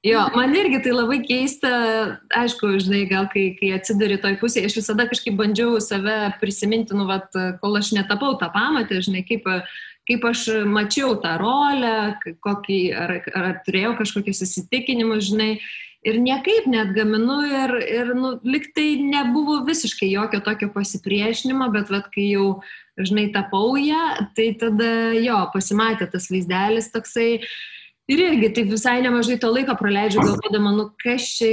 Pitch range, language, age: 200-245 Hz, English, 20-39